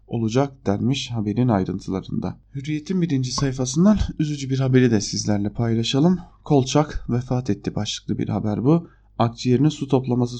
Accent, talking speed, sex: Turkish, 135 wpm, male